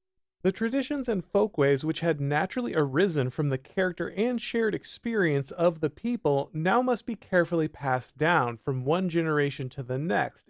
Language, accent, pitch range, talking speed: English, American, 135-195 Hz, 165 wpm